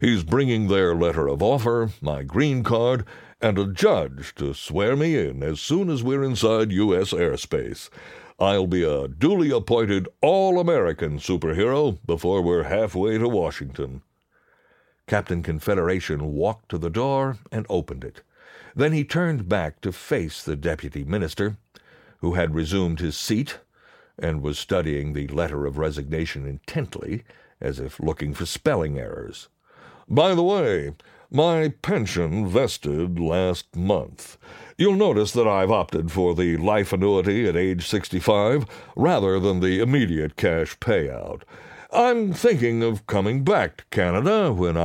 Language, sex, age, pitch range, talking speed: English, male, 60-79, 80-115 Hz, 140 wpm